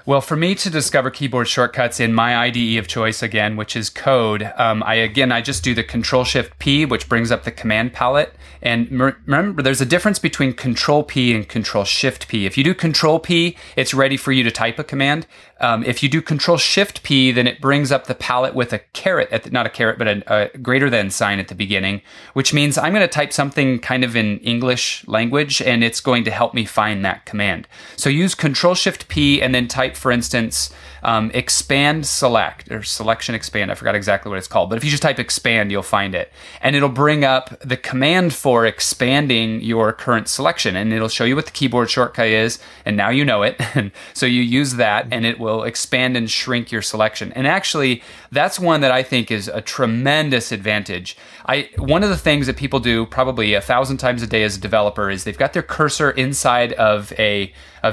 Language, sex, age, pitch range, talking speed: English, male, 30-49, 110-140 Hz, 220 wpm